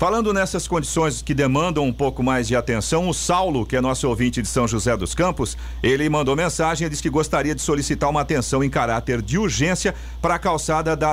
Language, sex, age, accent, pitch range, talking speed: Portuguese, male, 50-69, Brazilian, 130-160 Hz, 215 wpm